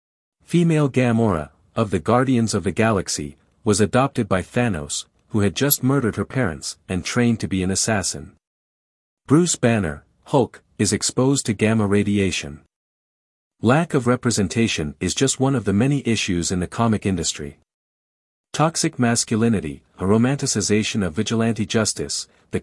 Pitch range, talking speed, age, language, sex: 90-125 Hz, 145 wpm, 50-69, English, male